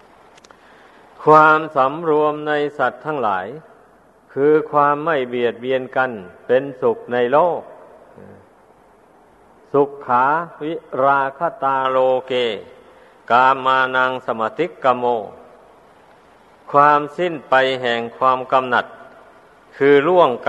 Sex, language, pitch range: male, Thai, 125-150 Hz